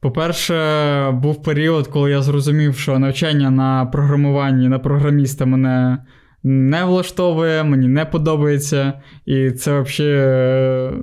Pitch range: 130-150 Hz